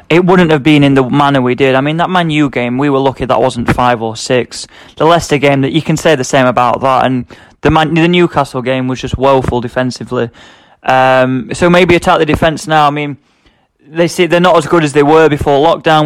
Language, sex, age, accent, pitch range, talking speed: English, male, 20-39, British, 130-165 Hz, 245 wpm